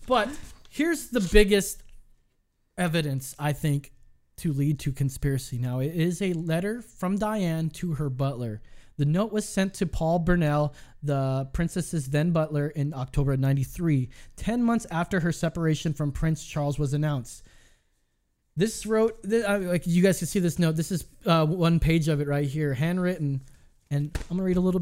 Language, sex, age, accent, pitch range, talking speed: English, male, 20-39, American, 145-180 Hz, 170 wpm